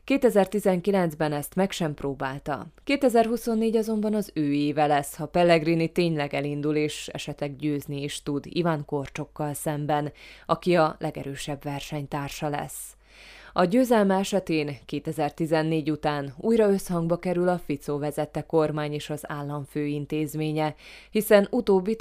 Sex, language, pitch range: female, Hungarian, 145-180 Hz